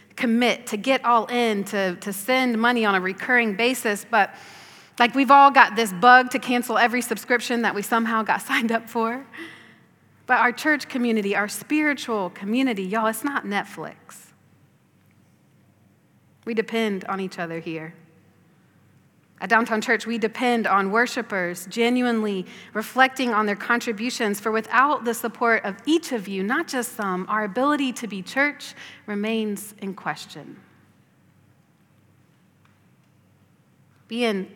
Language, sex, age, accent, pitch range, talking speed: English, female, 30-49, American, 200-245 Hz, 140 wpm